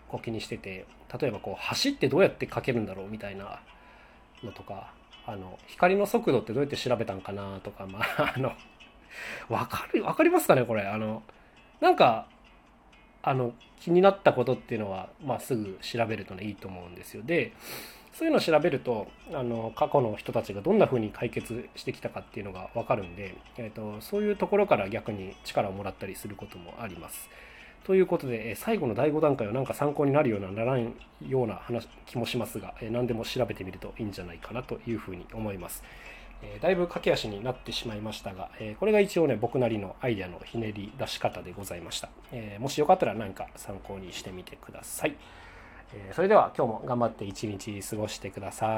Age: 20-39